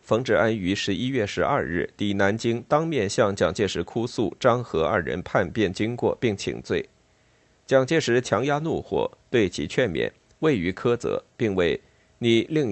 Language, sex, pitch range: Chinese, male, 105-130 Hz